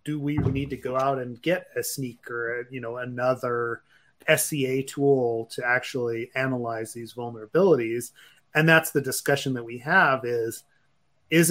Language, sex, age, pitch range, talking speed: English, male, 30-49, 120-150 Hz, 150 wpm